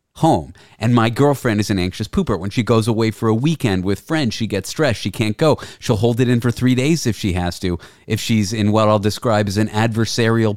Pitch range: 95-135 Hz